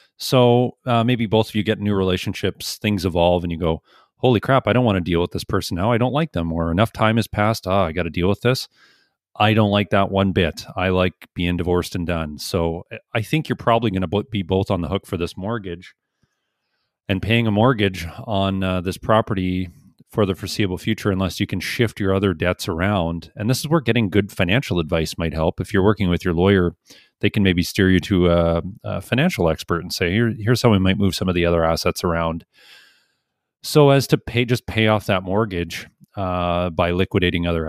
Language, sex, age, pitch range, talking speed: English, male, 40-59, 85-110 Hz, 225 wpm